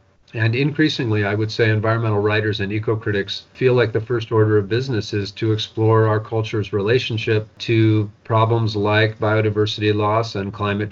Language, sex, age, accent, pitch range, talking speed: English, male, 40-59, American, 100-115 Hz, 165 wpm